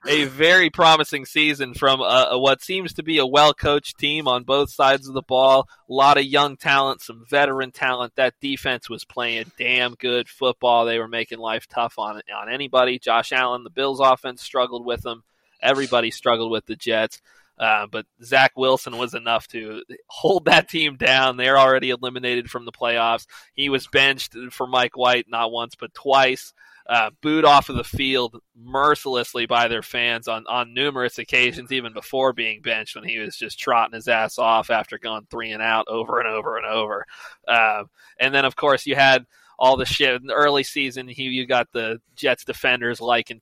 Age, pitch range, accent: 20-39, 115-135 Hz, American